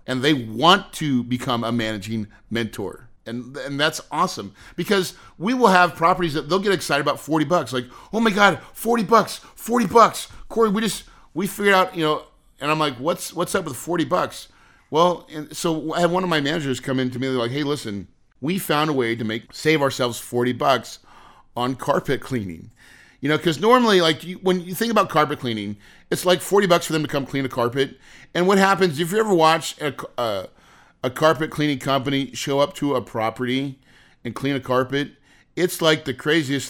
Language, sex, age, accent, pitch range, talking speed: English, male, 40-59, American, 130-175 Hz, 210 wpm